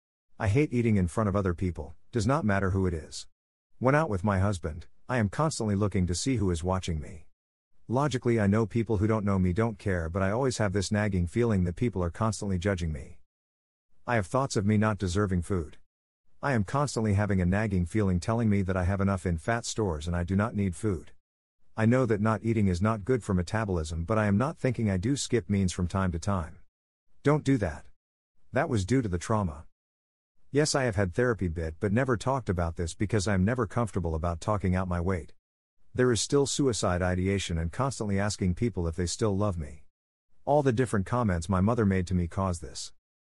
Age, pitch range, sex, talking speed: 50-69, 90-115 Hz, male, 220 wpm